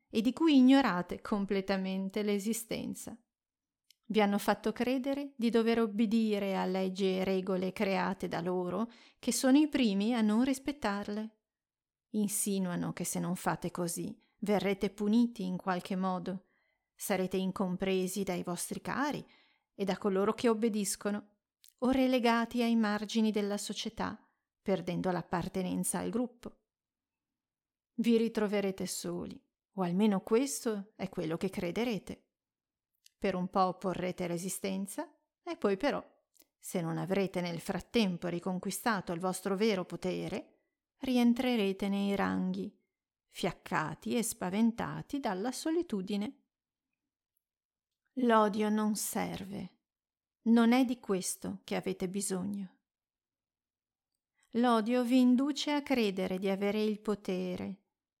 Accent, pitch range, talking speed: native, 190-235 Hz, 115 wpm